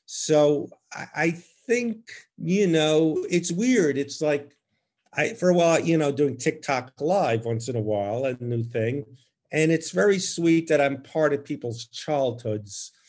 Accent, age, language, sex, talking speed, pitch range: American, 50-69, English, male, 160 wpm, 120-165 Hz